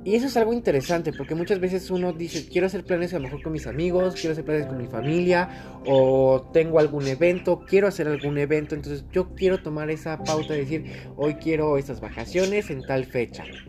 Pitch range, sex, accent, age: 110-155 Hz, male, Mexican, 20-39